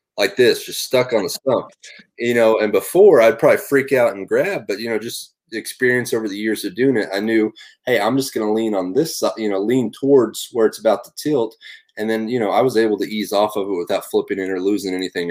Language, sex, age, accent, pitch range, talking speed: English, male, 30-49, American, 95-120 Hz, 260 wpm